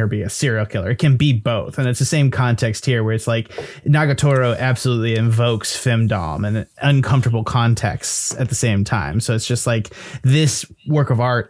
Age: 20-39